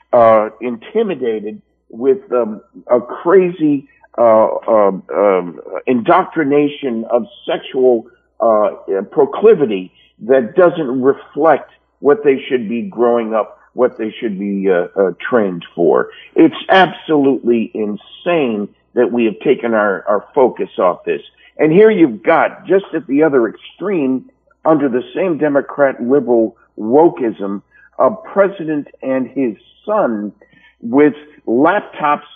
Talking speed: 120 wpm